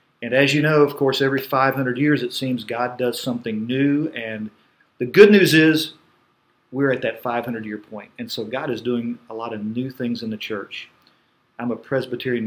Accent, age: American, 40-59